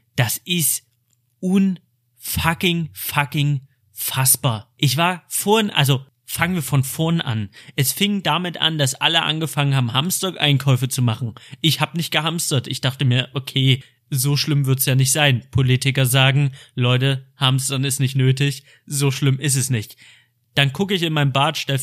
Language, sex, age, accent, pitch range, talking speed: German, male, 30-49, German, 130-155 Hz, 160 wpm